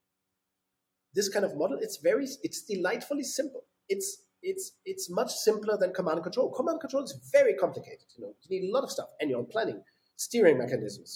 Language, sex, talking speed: English, male, 195 wpm